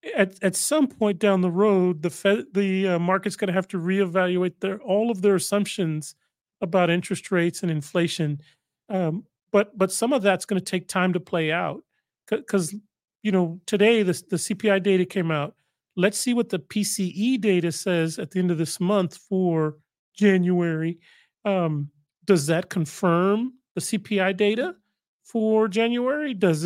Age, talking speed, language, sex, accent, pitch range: 40-59, 170 wpm, English, male, American, 175-210 Hz